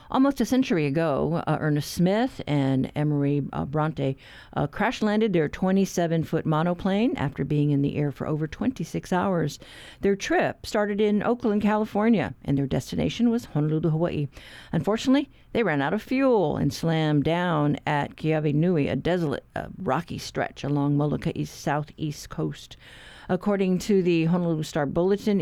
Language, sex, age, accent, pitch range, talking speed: English, female, 50-69, American, 155-200 Hz, 155 wpm